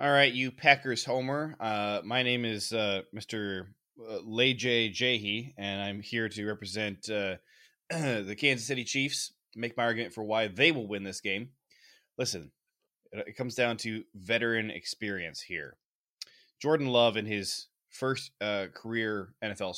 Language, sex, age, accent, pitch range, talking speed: English, male, 20-39, American, 100-125 Hz, 150 wpm